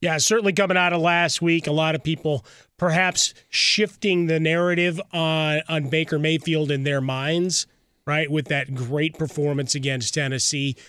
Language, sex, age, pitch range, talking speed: English, male, 30-49, 135-155 Hz, 160 wpm